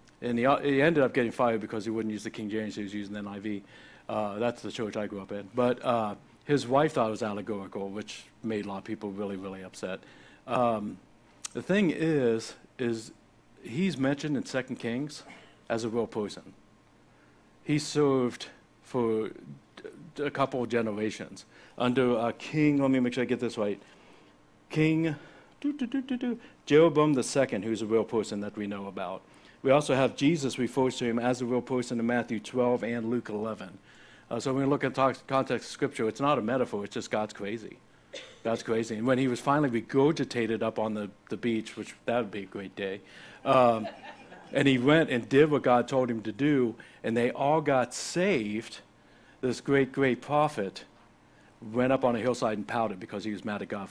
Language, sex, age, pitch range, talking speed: English, male, 60-79, 110-135 Hz, 200 wpm